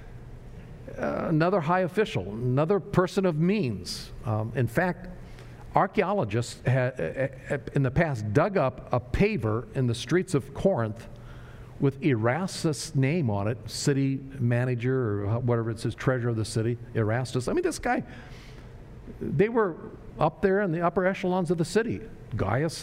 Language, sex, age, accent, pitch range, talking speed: English, male, 50-69, American, 120-170 Hz, 145 wpm